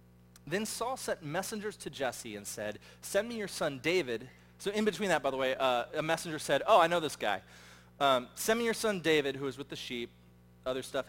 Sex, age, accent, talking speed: male, 40-59, American, 225 wpm